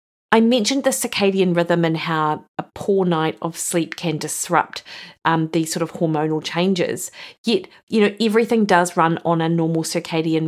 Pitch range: 170-205 Hz